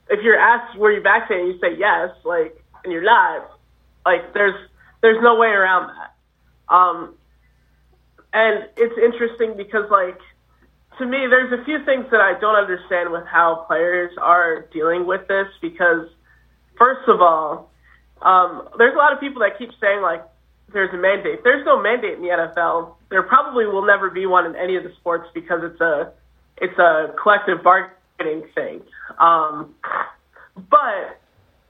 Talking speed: 165 wpm